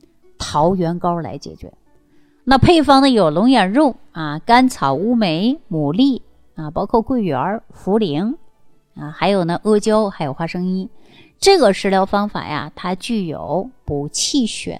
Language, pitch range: Chinese, 160-225 Hz